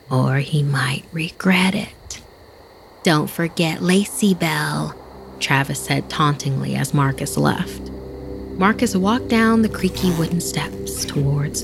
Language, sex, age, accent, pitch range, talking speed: English, female, 30-49, American, 135-200 Hz, 120 wpm